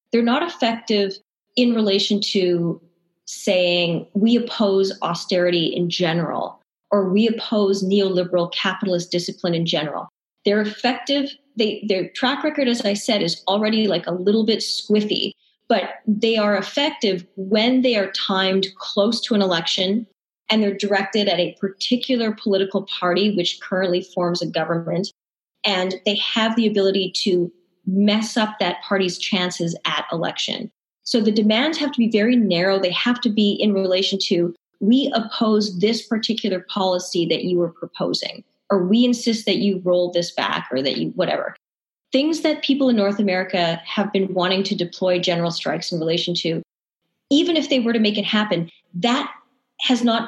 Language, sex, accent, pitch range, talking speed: English, female, American, 180-225 Hz, 165 wpm